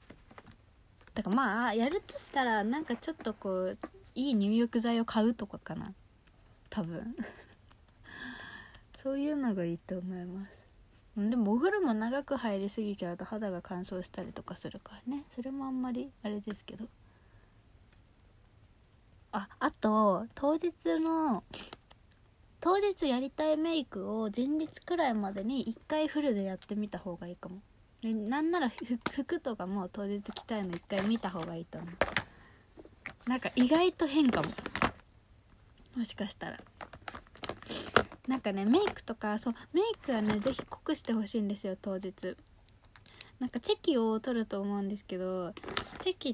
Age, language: 20-39, Japanese